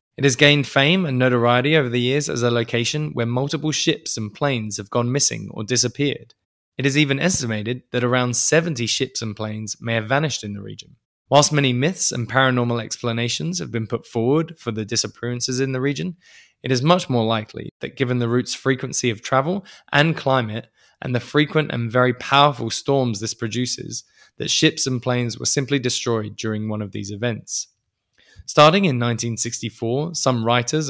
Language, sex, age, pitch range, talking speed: English, male, 20-39, 115-140 Hz, 185 wpm